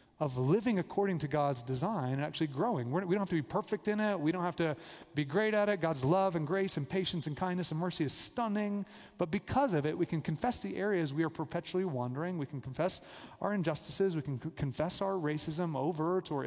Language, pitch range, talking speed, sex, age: English, 140-185 Hz, 225 wpm, male, 30-49